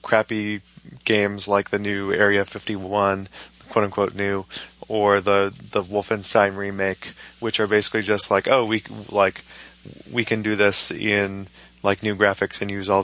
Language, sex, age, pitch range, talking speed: English, male, 20-39, 100-110 Hz, 155 wpm